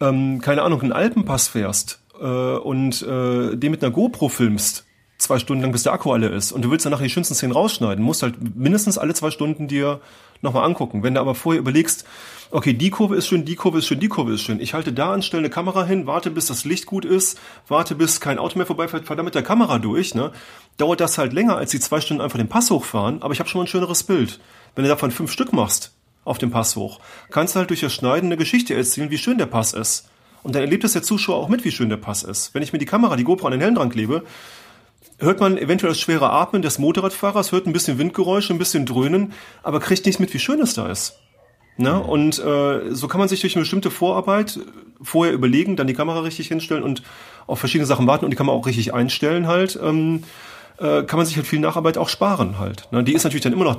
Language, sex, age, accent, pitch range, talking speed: German, male, 30-49, German, 125-175 Hz, 250 wpm